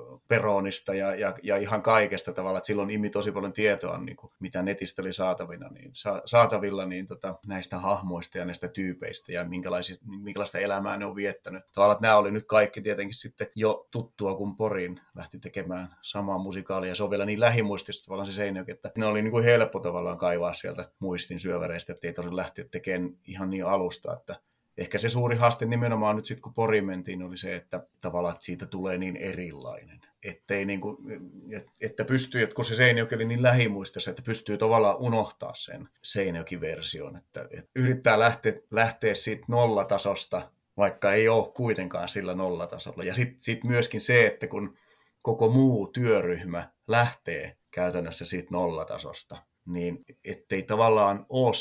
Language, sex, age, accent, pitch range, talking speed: Finnish, male, 30-49, native, 95-115 Hz, 165 wpm